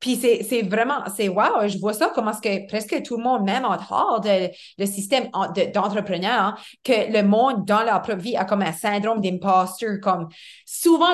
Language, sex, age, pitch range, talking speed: English, female, 30-49, 210-275 Hz, 215 wpm